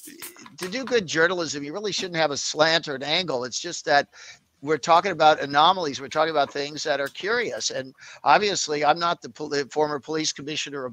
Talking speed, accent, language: 210 wpm, American, English